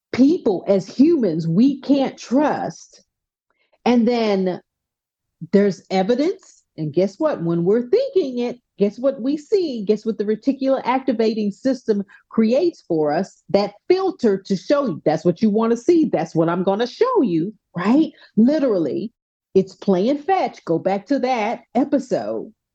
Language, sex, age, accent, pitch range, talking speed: English, female, 40-59, American, 185-260 Hz, 150 wpm